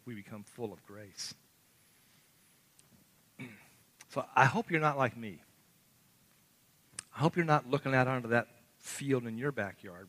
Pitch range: 105-130 Hz